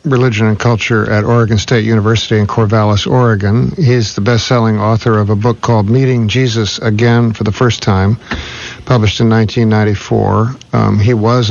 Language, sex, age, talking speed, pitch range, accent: English, male, 50-69, 160 wpm, 105-120 Hz, American